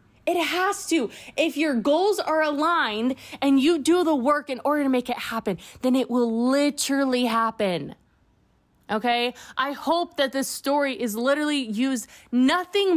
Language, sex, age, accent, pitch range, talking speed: English, female, 20-39, American, 225-290 Hz, 155 wpm